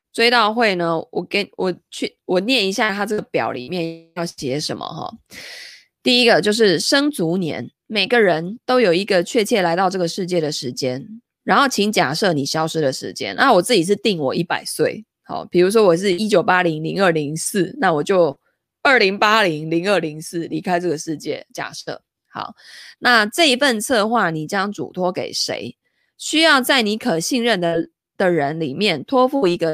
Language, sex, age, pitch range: Chinese, female, 20-39, 165-225 Hz